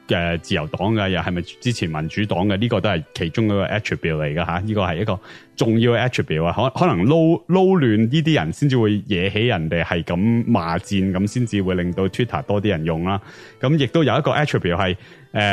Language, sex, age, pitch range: English, male, 30-49, 95-130 Hz